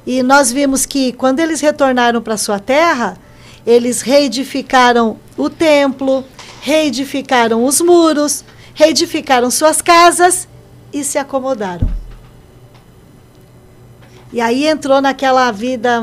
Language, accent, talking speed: Portuguese, Brazilian, 105 wpm